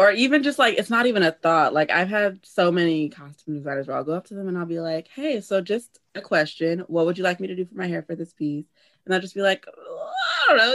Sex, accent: female, American